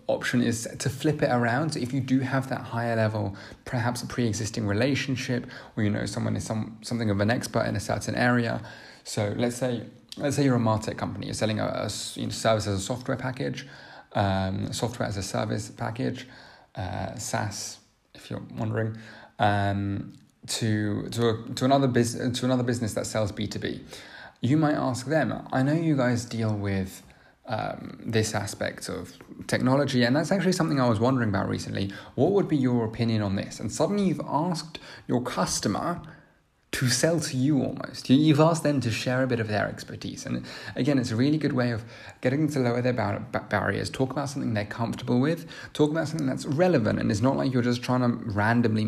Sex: male